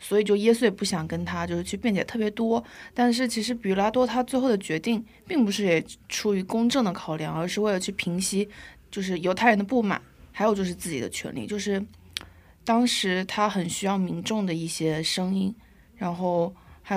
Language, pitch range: Korean, 185-230 Hz